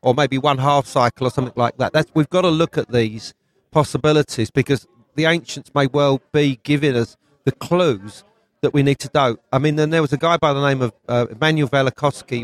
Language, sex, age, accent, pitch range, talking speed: English, male, 40-59, British, 120-150 Hz, 215 wpm